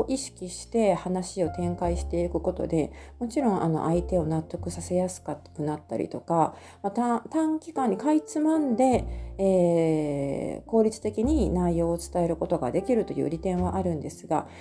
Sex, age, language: female, 40-59, Japanese